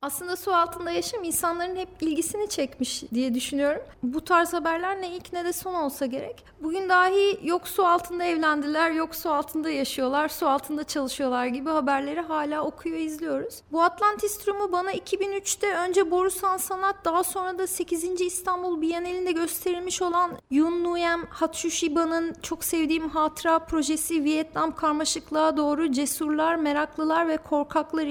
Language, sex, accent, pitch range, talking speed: Turkish, female, native, 310-370 Hz, 145 wpm